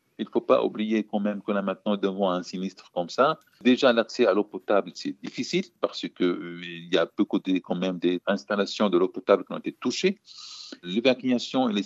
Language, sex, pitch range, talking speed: French, male, 90-145 Hz, 215 wpm